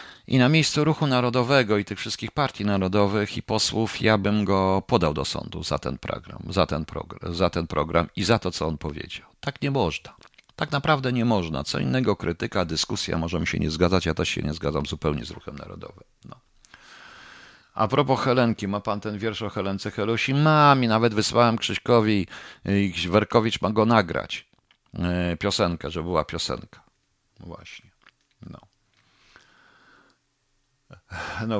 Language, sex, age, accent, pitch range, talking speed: Polish, male, 50-69, native, 90-130 Hz, 160 wpm